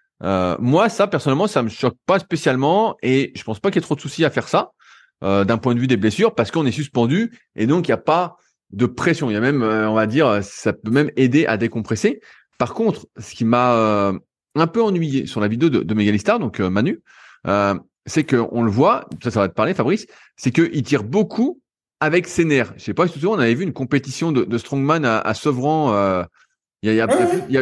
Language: French